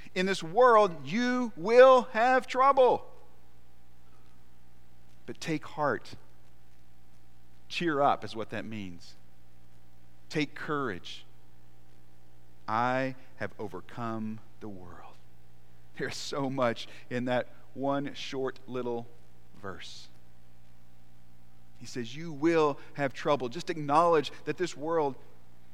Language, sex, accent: English, male, American